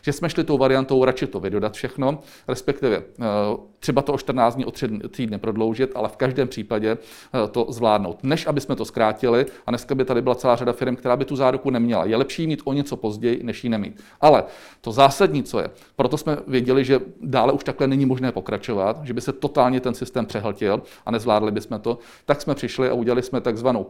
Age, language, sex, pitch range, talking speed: 40-59, Czech, male, 120-140 Hz, 210 wpm